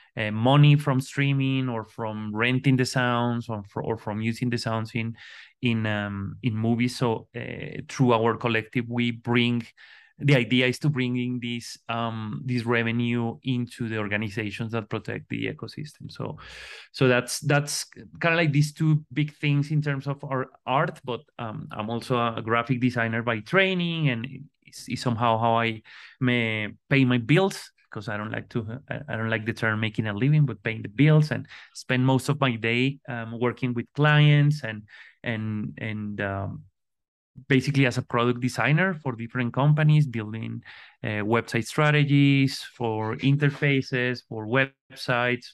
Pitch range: 110-135 Hz